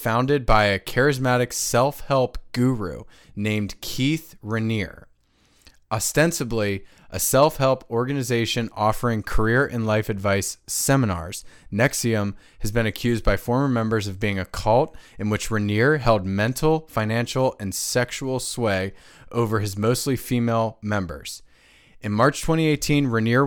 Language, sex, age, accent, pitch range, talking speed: English, male, 20-39, American, 105-135 Hz, 125 wpm